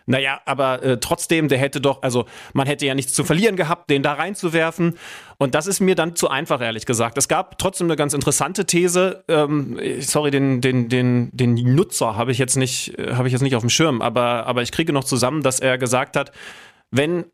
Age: 30-49